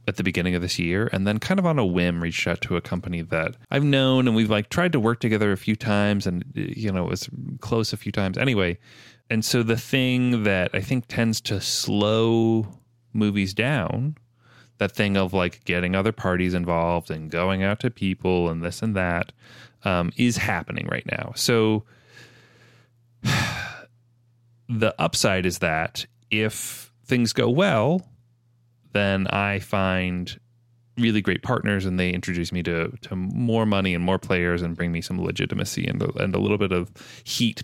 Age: 30-49